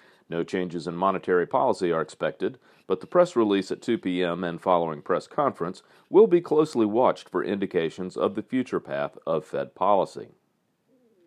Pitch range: 90-145 Hz